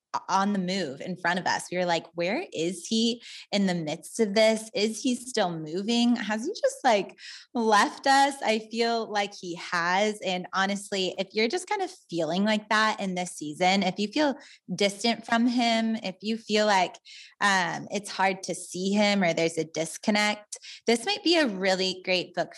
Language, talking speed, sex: English, 195 wpm, female